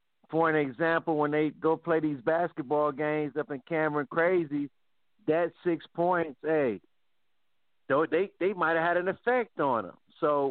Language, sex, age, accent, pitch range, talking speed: English, male, 50-69, American, 145-180 Hz, 155 wpm